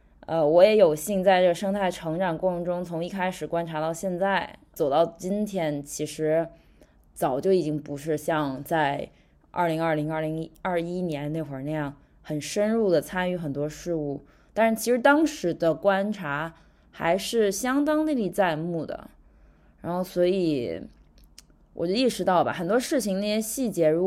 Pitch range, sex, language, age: 150-195 Hz, female, Chinese, 20-39